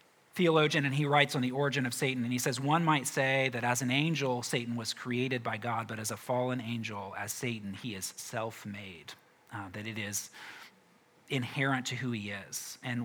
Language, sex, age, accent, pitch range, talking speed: English, male, 40-59, American, 115-135 Hz, 200 wpm